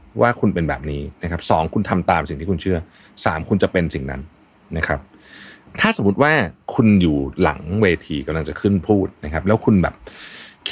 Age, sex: 30-49, male